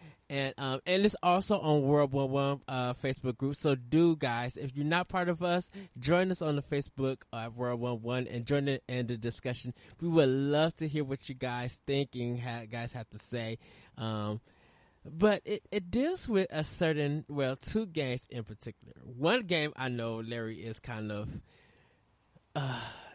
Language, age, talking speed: English, 20-39, 190 wpm